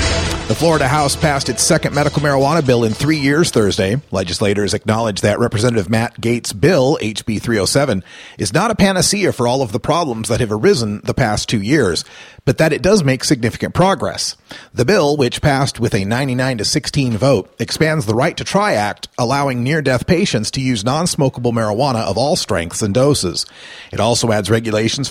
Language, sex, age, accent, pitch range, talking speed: English, male, 40-59, American, 110-145 Hz, 180 wpm